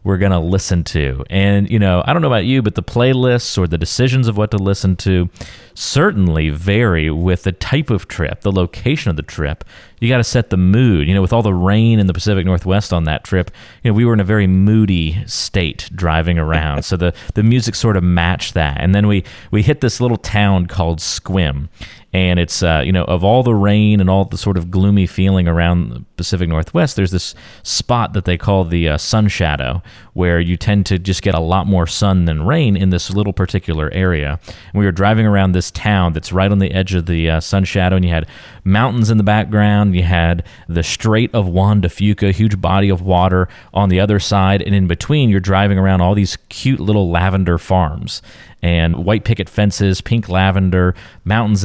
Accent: American